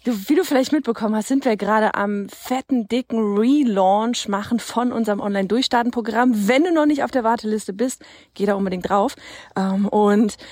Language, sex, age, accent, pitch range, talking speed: German, female, 30-49, German, 215-275 Hz, 170 wpm